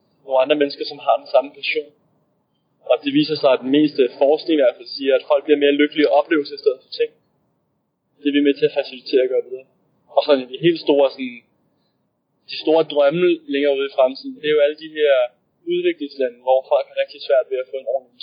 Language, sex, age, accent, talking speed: Danish, male, 20-39, native, 240 wpm